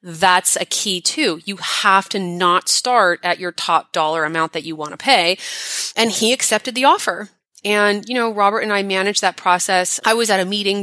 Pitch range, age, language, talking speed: 180-225 Hz, 30-49, English, 210 wpm